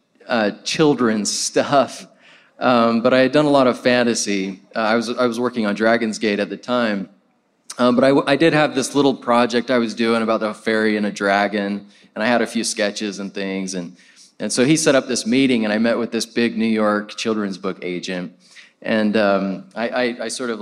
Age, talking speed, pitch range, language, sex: 20-39, 220 wpm, 100-125 Hz, English, male